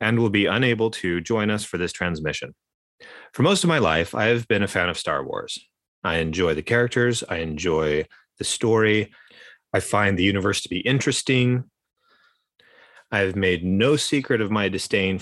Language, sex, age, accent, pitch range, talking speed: English, male, 30-49, American, 90-125 Hz, 180 wpm